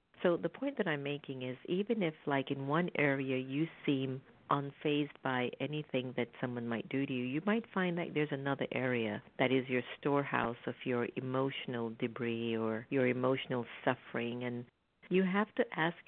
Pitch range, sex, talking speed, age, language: 135-180 Hz, female, 180 wpm, 50-69, English